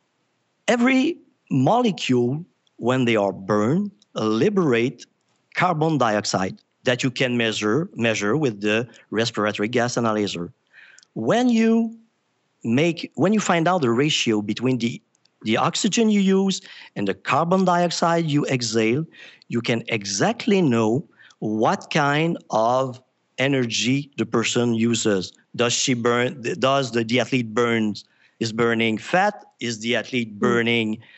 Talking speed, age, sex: 125 wpm, 50-69, male